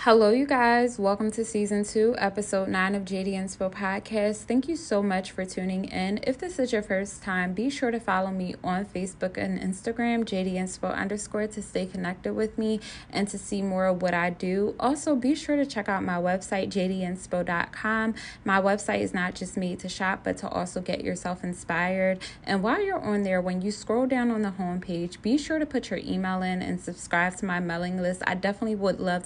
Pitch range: 175-215 Hz